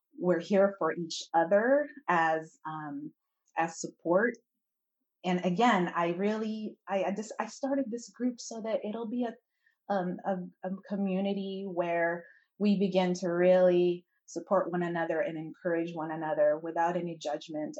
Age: 30-49